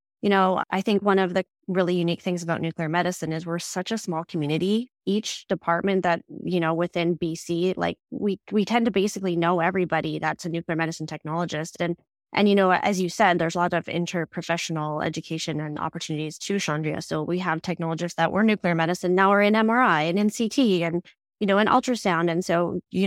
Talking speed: 210 wpm